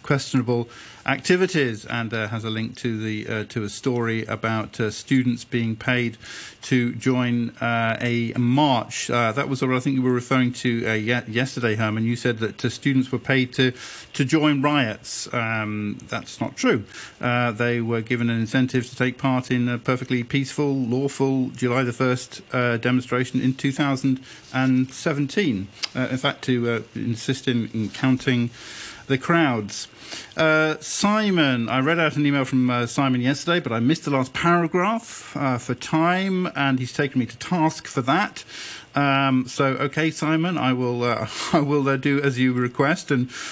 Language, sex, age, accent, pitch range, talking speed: English, male, 50-69, British, 120-140 Hz, 175 wpm